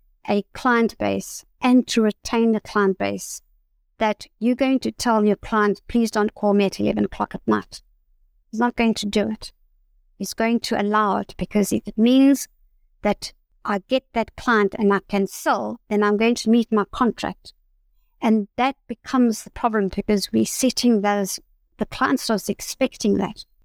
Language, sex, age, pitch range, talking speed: English, female, 60-79, 205-255 Hz, 175 wpm